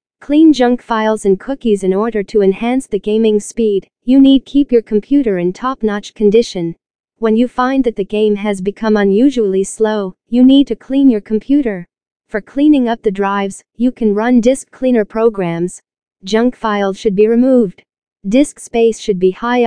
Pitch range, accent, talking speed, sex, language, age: 205-240 Hz, American, 175 wpm, female, English, 40-59